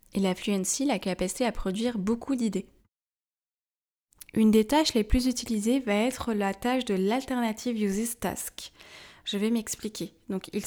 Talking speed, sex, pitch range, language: 150 wpm, female, 195-225 Hz, French